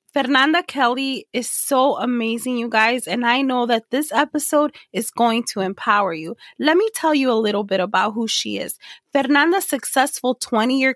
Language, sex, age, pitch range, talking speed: English, female, 20-39, 220-265 Hz, 175 wpm